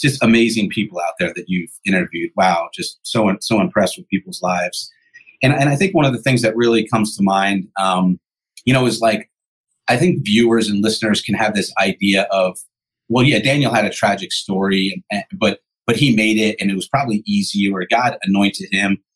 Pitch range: 105-135 Hz